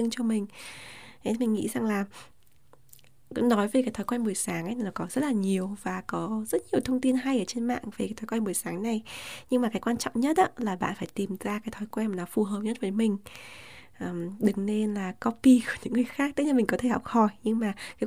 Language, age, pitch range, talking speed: Vietnamese, 20-39, 205-245 Hz, 250 wpm